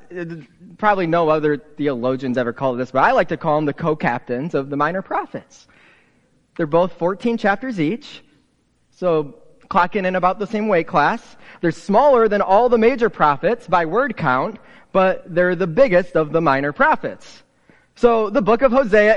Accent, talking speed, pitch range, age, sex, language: American, 170 wpm, 145-210 Hz, 30-49, male, English